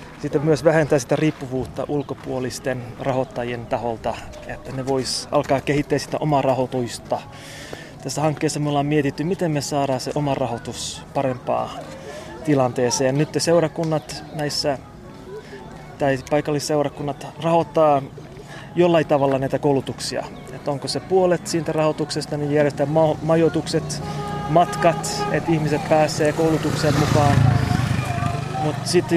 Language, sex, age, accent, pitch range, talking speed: Finnish, male, 20-39, native, 135-160 Hz, 115 wpm